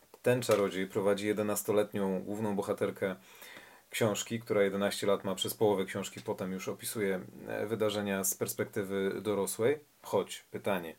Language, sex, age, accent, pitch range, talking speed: Polish, male, 40-59, native, 100-125 Hz, 125 wpm